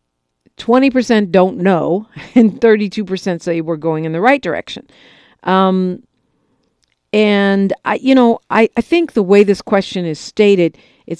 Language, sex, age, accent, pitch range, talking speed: English, female, 50-69, American, 165-205 Hz, 145 wpm